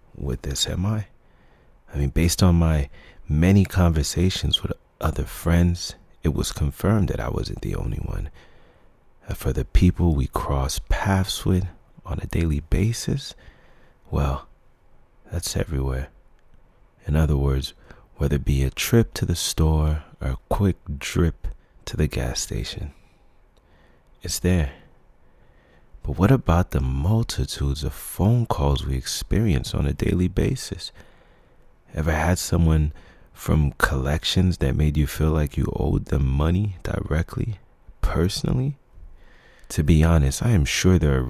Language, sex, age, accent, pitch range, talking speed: English, male, 30-49, American, 70-95 Hz, 140 wpm